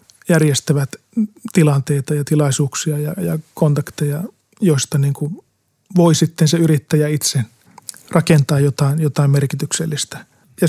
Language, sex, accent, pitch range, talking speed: Finnish, male, native, 145-165 Hz, 105 wpm